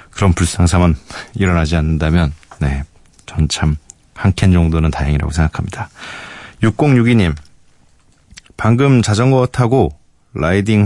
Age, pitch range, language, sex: 40-59, 85-120 Hz, Korean, male